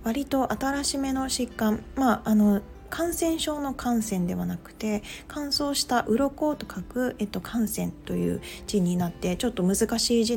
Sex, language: female, Japanese